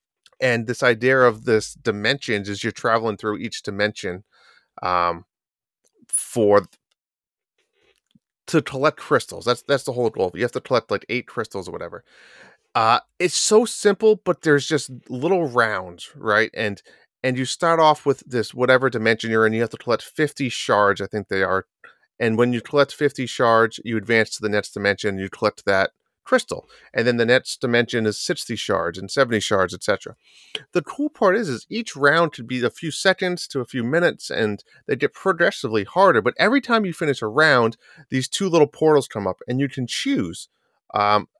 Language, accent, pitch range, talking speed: English, American, 110-160 Hz, 185 wpm